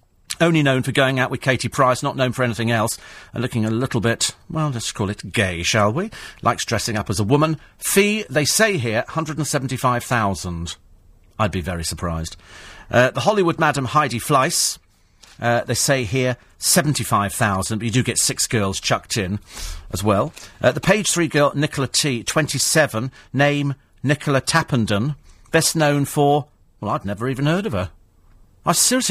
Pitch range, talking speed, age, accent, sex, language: 105-155 Hz, 170 wpm, 50-69, British, male, English